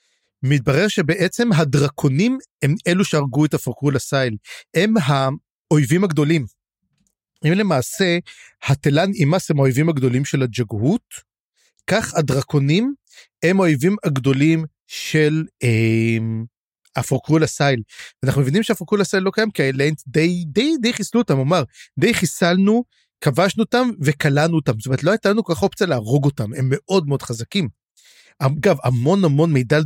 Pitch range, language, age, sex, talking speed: 135-190 Hz, Hebrew, 30-49, male, 140 wpm